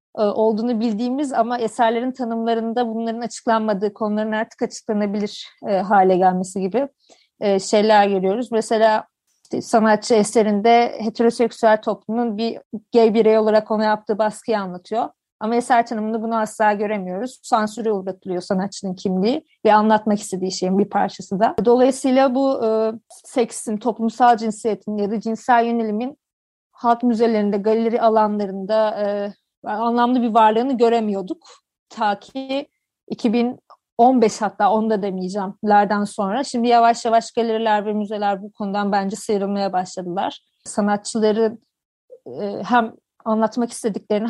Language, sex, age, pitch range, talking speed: Turkish, female, 30-49, 210-235 Hz, 125 wpm